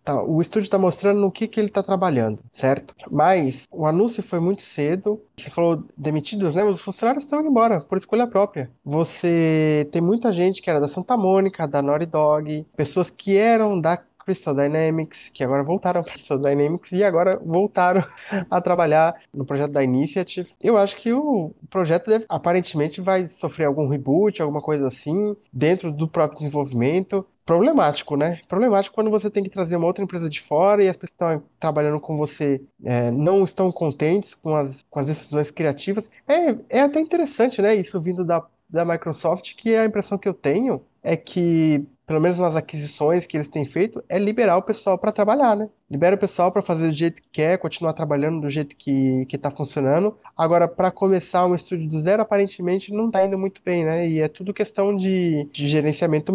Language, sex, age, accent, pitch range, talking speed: Portuguese, male, 20-39, Brazilian, 150-195 Hz, 195 wpm